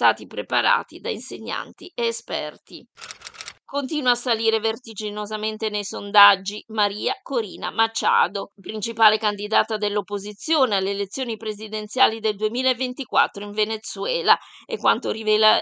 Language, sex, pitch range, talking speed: Italian, female, 210-250 Hz, 105 wpm